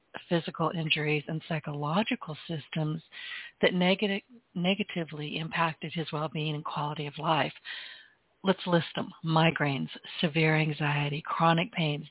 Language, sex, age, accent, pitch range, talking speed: English, female, 60-79, American, 155-190 Hz, 115 wpm